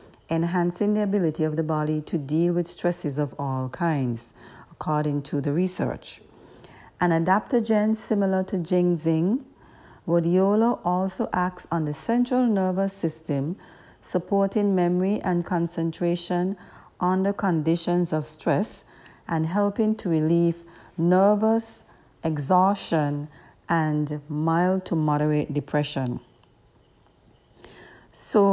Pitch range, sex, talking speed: 160-195 Hz, female, 105 wpm